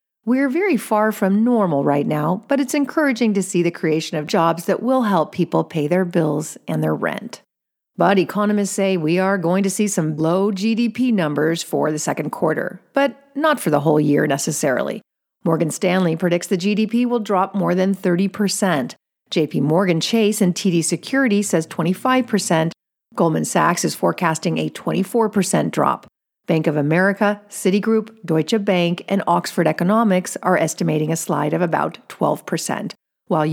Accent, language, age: American, English, 40-59